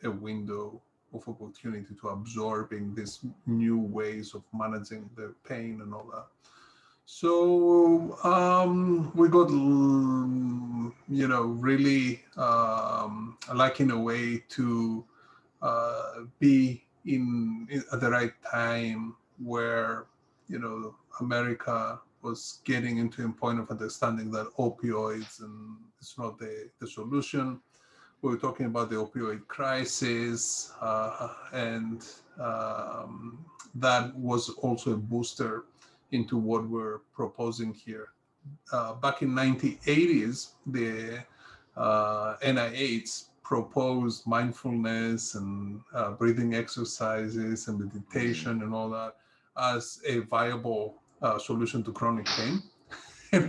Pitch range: 110-130 Hz